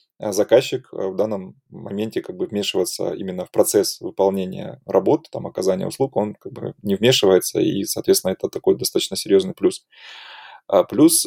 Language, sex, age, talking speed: Russian, male, 20-39, 155 wpm